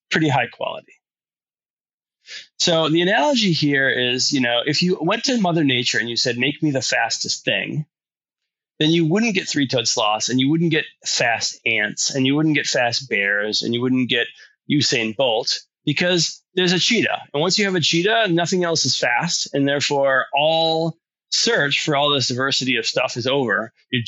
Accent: American